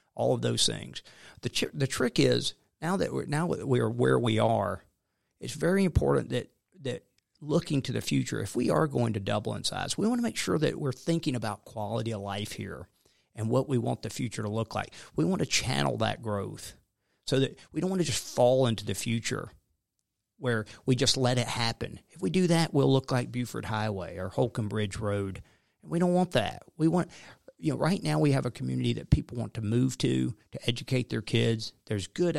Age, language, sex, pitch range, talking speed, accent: 50-69, English, male, 105-135 Hz, 220 wpm, American